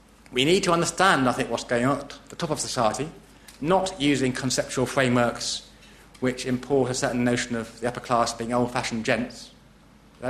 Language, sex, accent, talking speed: English, male, British, 180 wpm